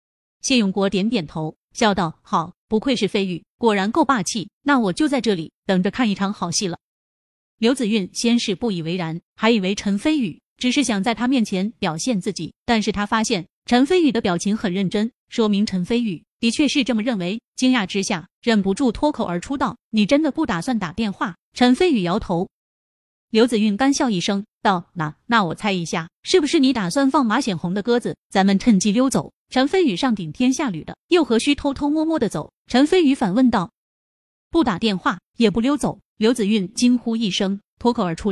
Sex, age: female, 30-49